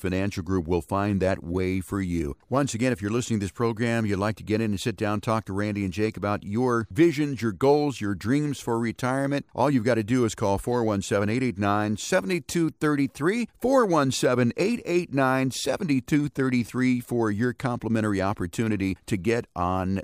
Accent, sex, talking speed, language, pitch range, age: American, male, 160 wpm, English, 100-125 Hz, 50-69